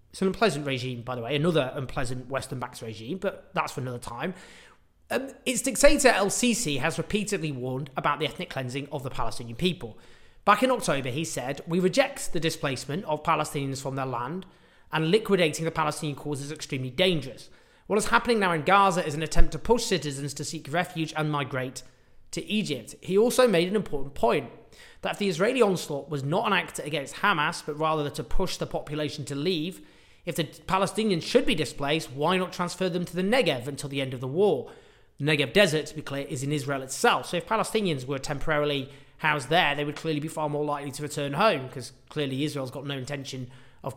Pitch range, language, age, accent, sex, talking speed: 135-180 Hz, English, 30-49, British, male, 205 wpm